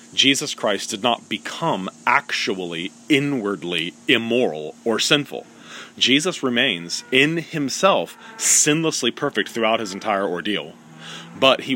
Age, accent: 30-49, American